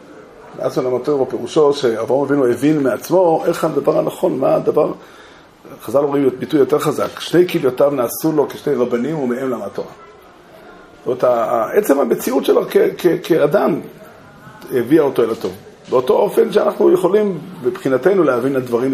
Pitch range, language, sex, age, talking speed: 125-175 Hz, Hebrew, male, 30-49, 145 wpm